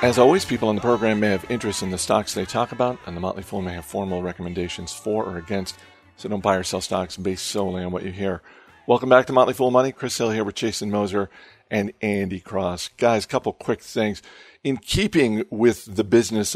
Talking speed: 230 wpm